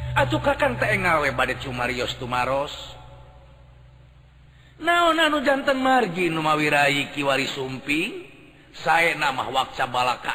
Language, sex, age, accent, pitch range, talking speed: Indonesian, male, 40-59, native, 130-145 Hz, 105 wpm